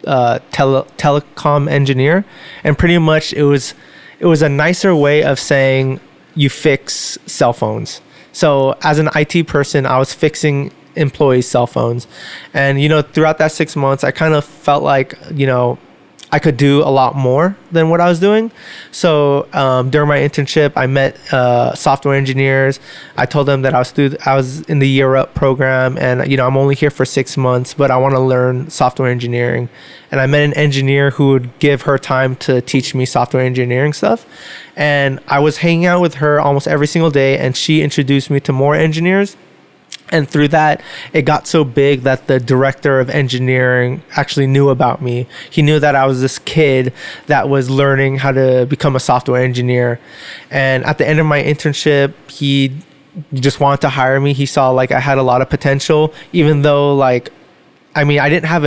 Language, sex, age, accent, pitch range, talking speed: English, male, 20-39, American, 130-150 Hz, 195 wpm